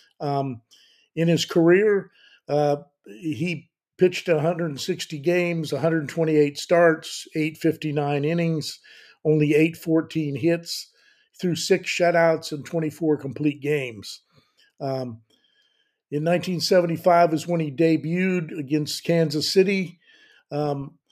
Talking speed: 95 wpm